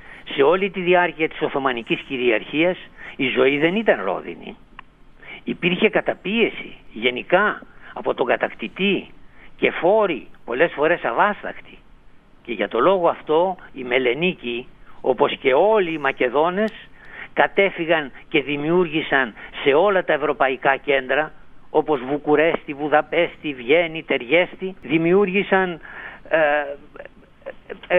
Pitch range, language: 145-185 Hz, Greek